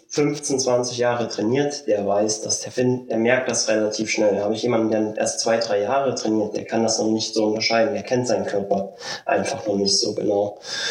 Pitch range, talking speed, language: 115-140 Hz, 210 wpm, German